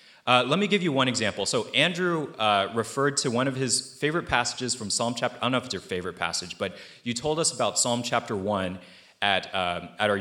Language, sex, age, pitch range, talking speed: English, male, 30-49, 110-145 Hz, 230 wpm